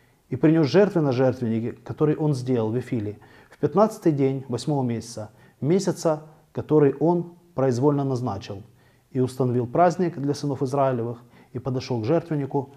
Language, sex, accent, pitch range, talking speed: Russian, male, native, 125-170 Hz, 140 wpm